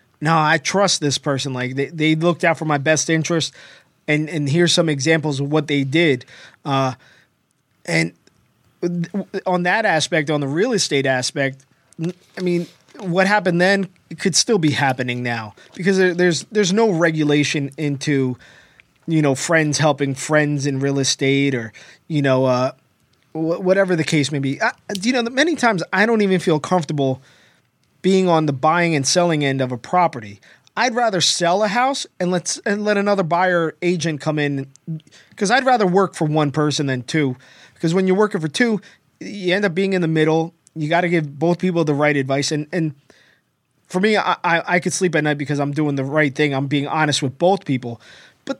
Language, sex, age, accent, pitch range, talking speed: English, male, 20-39, American, 140-180 Hz, 195 wpm